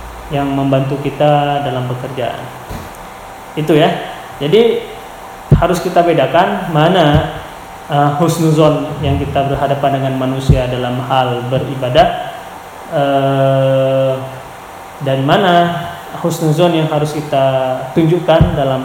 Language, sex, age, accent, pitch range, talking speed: Indonesian, male, 20-39, native, 135-160 Hz, 100 wpm